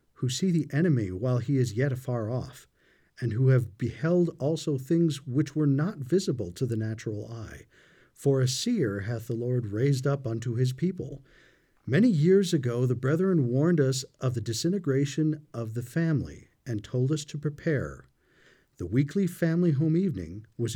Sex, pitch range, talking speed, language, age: male, 120-170 Hz, 170 wpm, English, 50-69